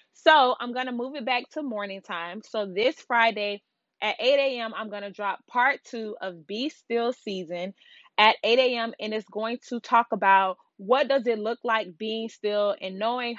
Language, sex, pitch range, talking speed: English, female, 200-245 Hz, 195 wpm